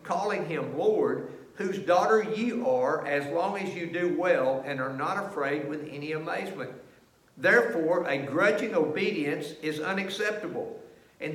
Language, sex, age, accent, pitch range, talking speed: English, male, 60-79, American, 160-235 Hz, 145 wpm